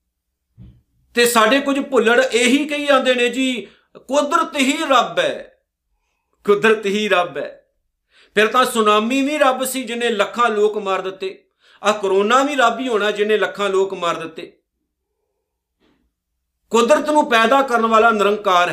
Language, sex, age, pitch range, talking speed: Punjabi, male, 50-69, 190-270 Hz, 145 wpm